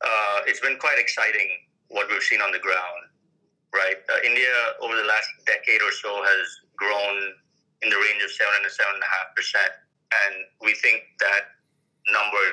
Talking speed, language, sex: 185 wpm, English, male